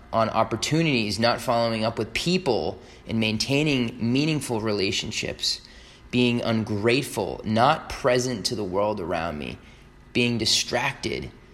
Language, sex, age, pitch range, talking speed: English, male, 20-39, 105-120 Hz, 115 wpm